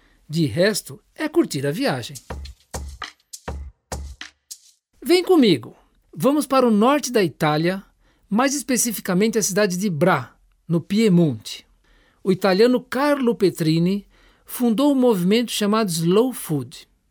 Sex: male